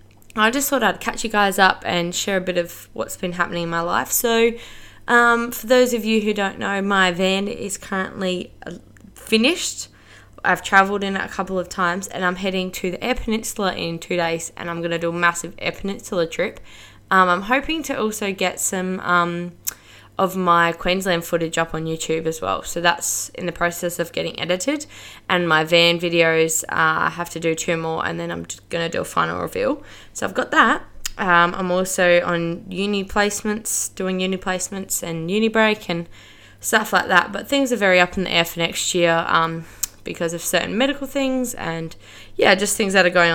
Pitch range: 170-200 Hz